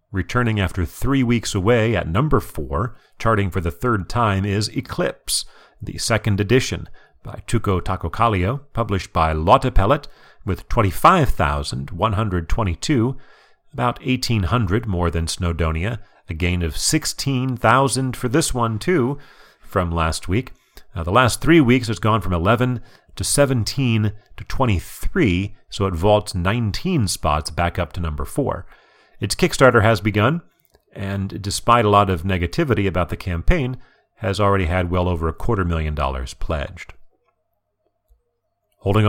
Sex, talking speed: male, 140 wpm